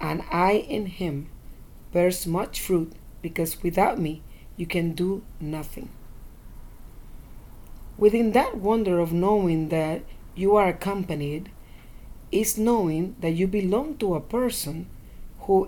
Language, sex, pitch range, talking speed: English, female, 160-205 Hz, 125 wpm